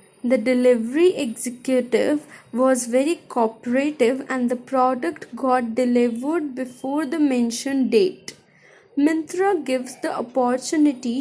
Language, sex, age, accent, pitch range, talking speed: English, female, 20-39, Indian, 230-290 Hz, 100 wpm